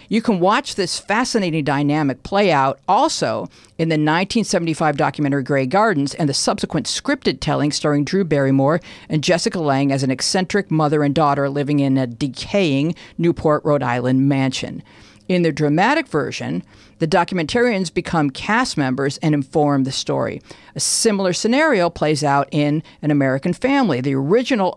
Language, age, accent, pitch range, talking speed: English, 50-69, American, 140-185 Hz, 155 wpm